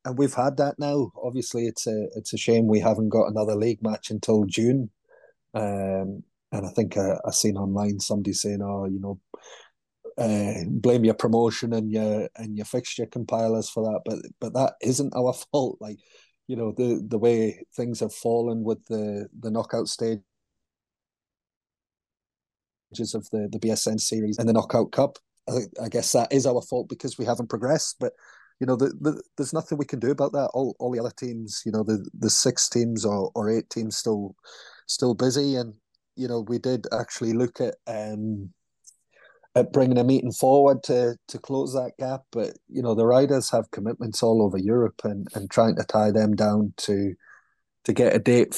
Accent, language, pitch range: British, English, 105-125 Hz